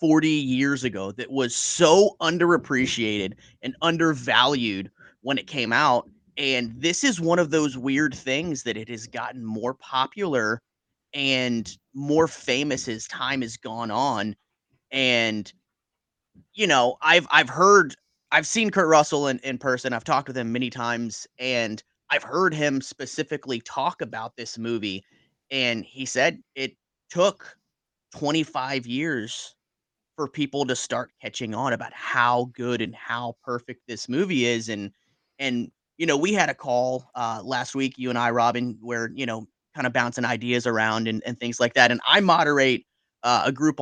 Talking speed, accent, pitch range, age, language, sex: 165 wpm, American, 115-145 Hz, 30-49, English, male